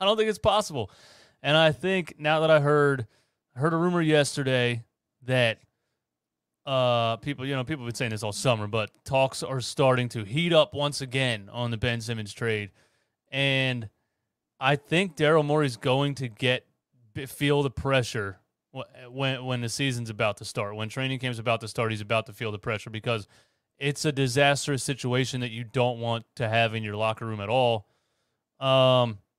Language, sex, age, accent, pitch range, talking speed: English, male, 30-49, American, 115-140 Hz, 185 wpm